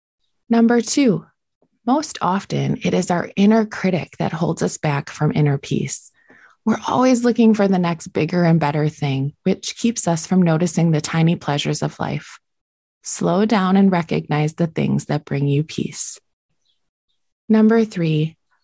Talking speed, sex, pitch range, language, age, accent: 155 wpm, female, 155-210 Hz, English, 20-39, American